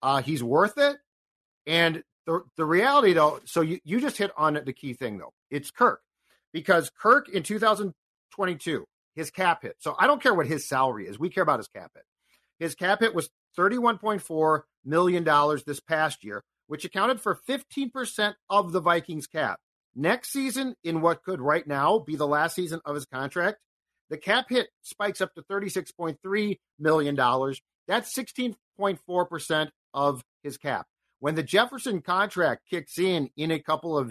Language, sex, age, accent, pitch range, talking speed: English, male, 50-69, American, 145-195 Hz, 195 wpm